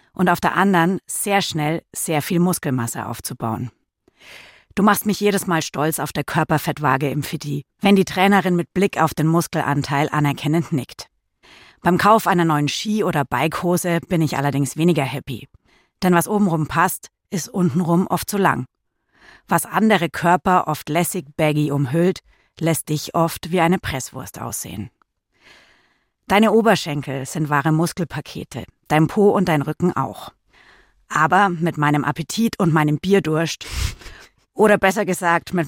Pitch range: 145-180 Hz